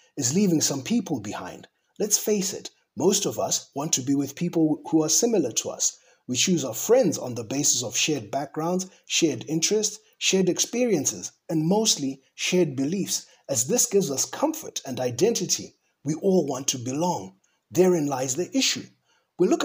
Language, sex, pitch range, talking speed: English, male, 150-190 Hz, 175 wpm